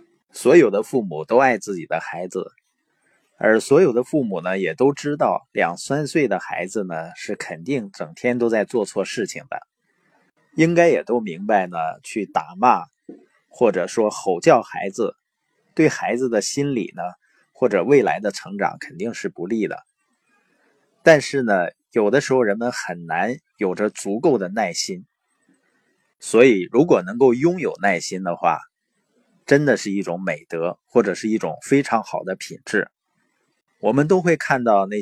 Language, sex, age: Chinese, male, 20-39